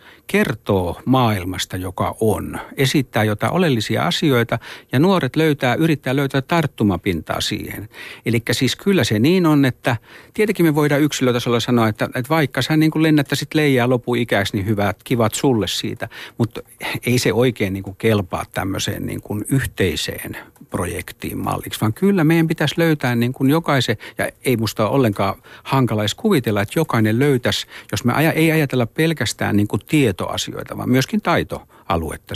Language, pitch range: Finnish, 105-145 Hz